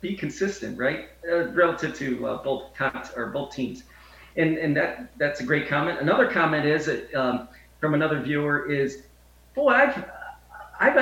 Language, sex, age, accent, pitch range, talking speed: English, male, 40-59, American, 160-200 Hz, 165 wpm